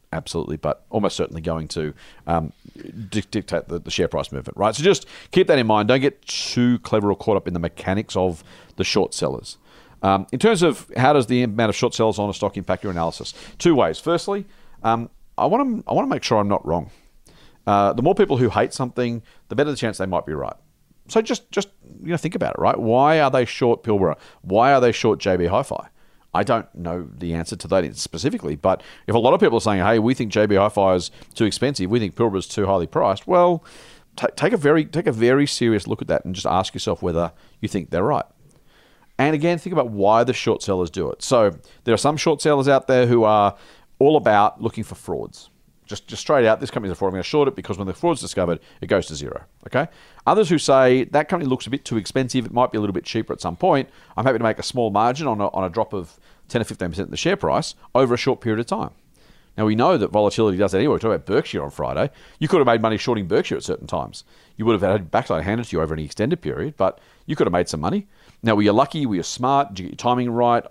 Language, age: English, 40-59